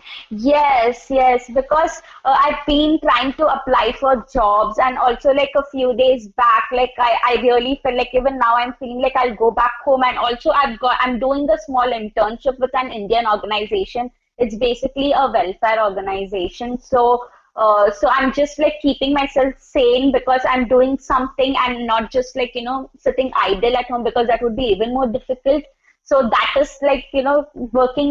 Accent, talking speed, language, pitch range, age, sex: Indian, 195 wpm, English, 245-275 Hz, 20-39, female